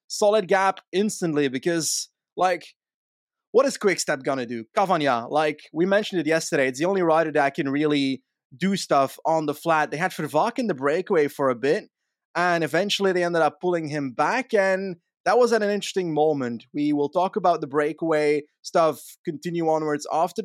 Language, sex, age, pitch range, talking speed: English, male, 20-39, 155-210 Hz, 185 wpm